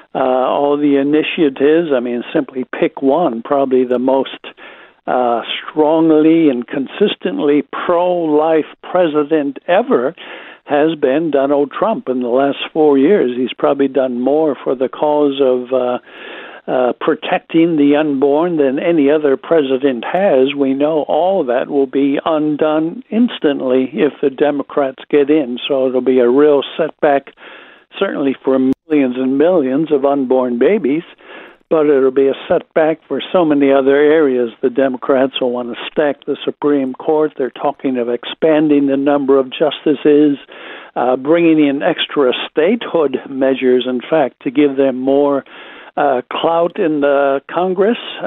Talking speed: 145 wpm